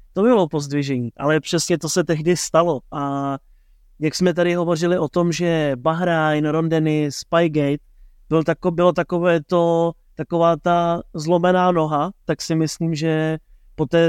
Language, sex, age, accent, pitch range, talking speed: Czech, male, 30-49, native, 145-165 Hz, 135 wpm